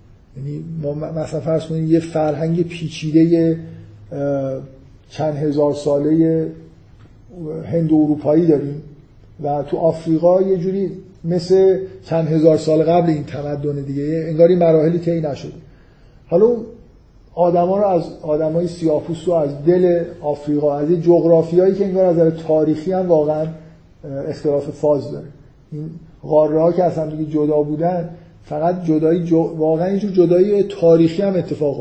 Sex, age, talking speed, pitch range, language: male, 50-69, 140 wpm, 145-170 Hz, Persian